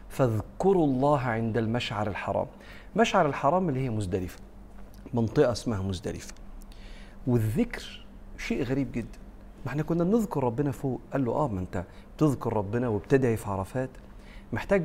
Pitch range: 105-145 Hz